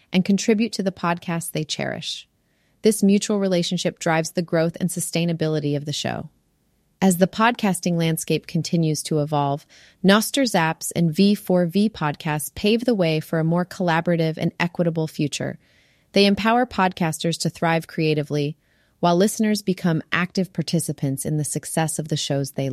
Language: English